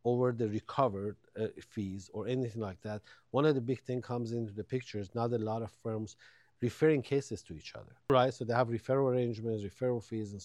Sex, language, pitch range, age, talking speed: male, English, 105-135 Hz, 50-69, 220 wpm